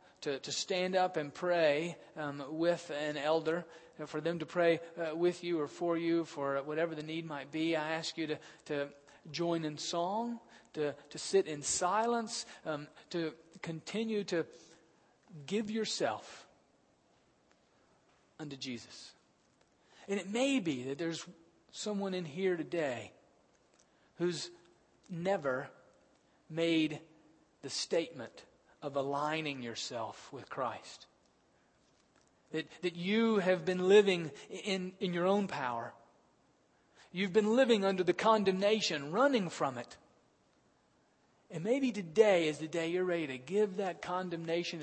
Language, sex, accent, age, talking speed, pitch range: English, male, American, 40-59, 135 wpm, 155-185 Hz